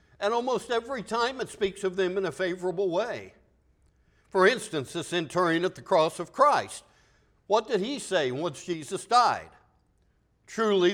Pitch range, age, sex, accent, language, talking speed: 165-230 Hz, 60-79, male, American, English, 160 wpm